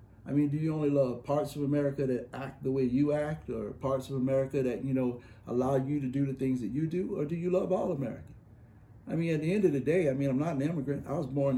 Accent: American